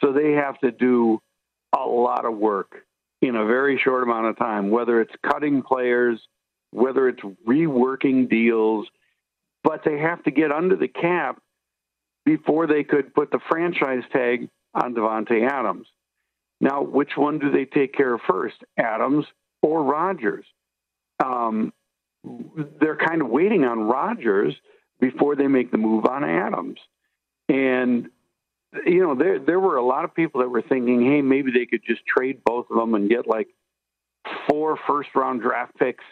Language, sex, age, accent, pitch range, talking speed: English, male, 60-79, American, 115-145 Hz, 165 wpm